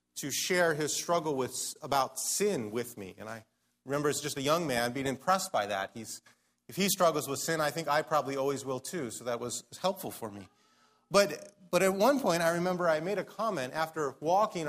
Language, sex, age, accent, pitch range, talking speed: English, male, 30-49, American, 135-200 Hz, 215 wpm